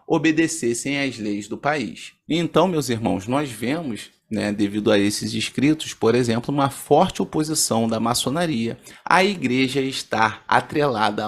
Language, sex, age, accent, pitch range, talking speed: Portuguese, male, 30-49, Brazilian, 125-190 Hz, 140 wpm